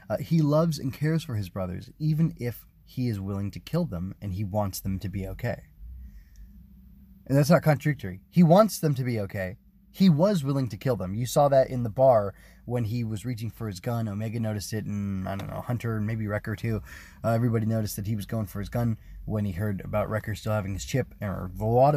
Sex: male